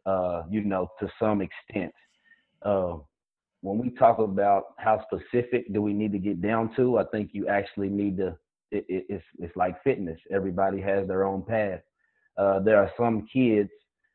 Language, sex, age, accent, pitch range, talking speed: English, male, 30-49, American, 95-110 Hz, 180 wpm